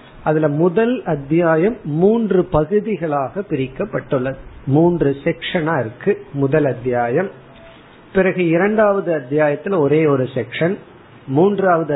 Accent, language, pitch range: native, Tamil, 140-180 Hz